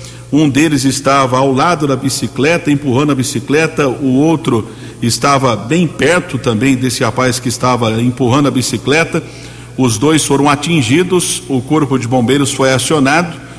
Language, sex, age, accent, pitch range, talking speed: Portuguese, male, 50-69, Brazilian, 125-145 Hz, 145 wpm